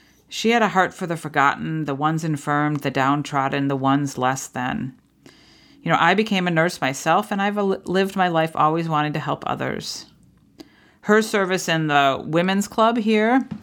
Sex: female